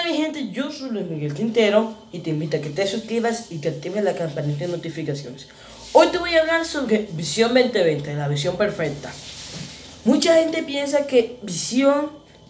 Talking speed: 180 wpm